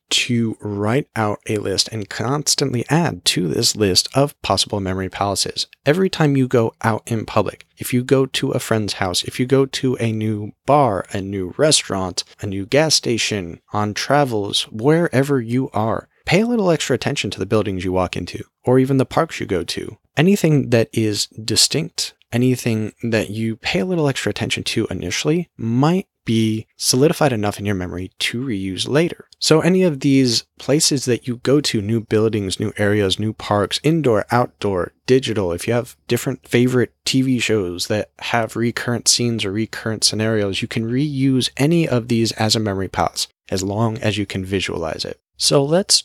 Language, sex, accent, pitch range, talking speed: English, male, American, 105-135 Hz, 185 wpm